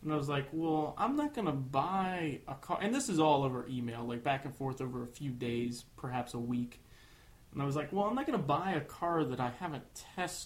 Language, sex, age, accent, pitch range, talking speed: English, male, 20-39, American, 130-160 Hz, 260 wpm